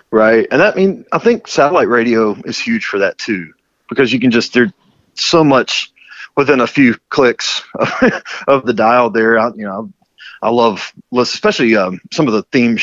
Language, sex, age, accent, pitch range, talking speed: English, male, 40-59, American, 105-125 Hz, 185 wpm